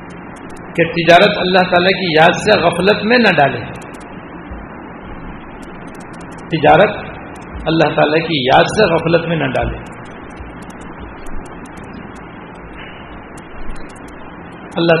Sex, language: male, English